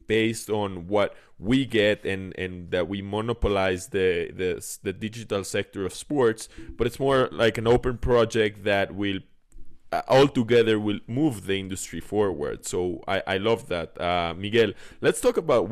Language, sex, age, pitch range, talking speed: English, male, 20-39, 95-120 Hz, 170 wpm